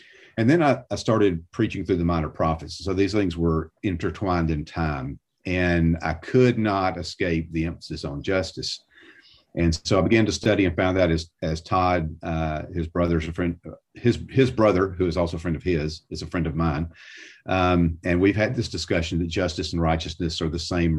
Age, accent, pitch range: 50-69, American, 80-100 Hz